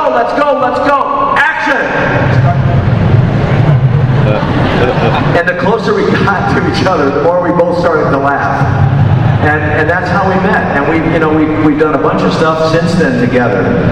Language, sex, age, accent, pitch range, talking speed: English, male, 50-69, American, 125-155 Hz, 175 wpm